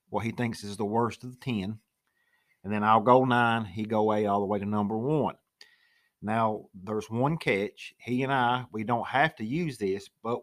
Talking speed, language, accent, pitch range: 215 wpm, English, American, 105-130 Hz